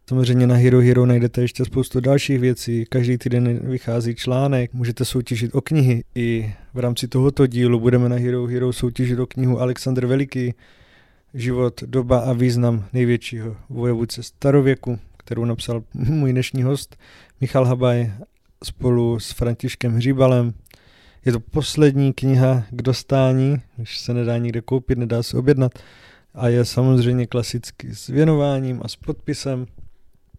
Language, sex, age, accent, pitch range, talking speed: Czech, male, 20-39, native, 120-130 Hz, 140 wpm